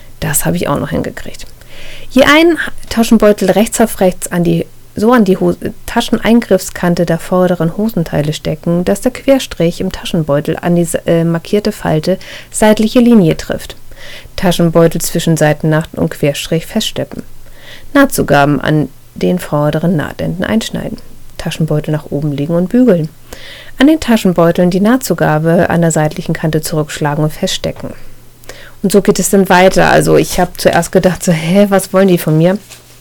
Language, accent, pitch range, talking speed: German, German, 155-200 Hz, 155 wpm